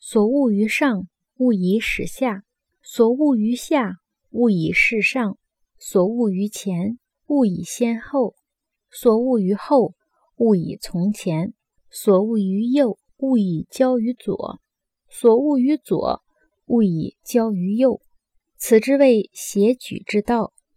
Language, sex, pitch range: Chinese, female, 195-255 Hz